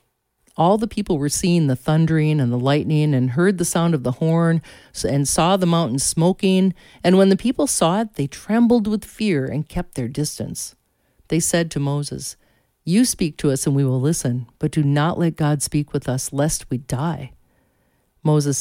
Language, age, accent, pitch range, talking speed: English, 50-69, American, 135-180 Hz, 195 wpm